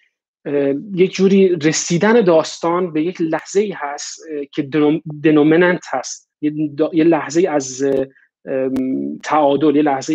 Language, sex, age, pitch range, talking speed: Persian, male, 30-49, 140-175 Hz, 125 wpm